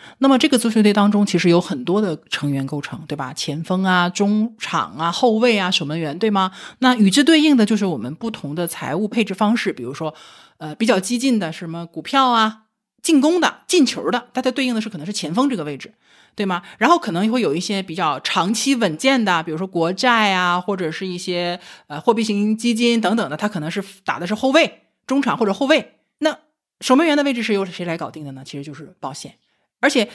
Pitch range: 175-250 Hz